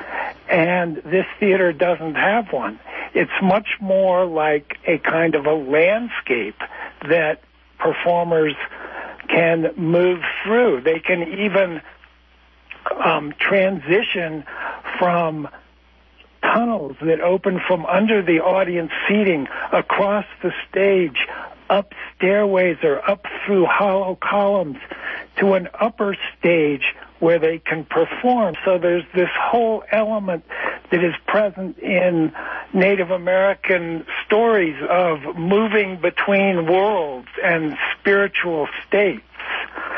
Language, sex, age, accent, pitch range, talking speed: English, male, 60-79, American, 170-200 Hz, 105 wpm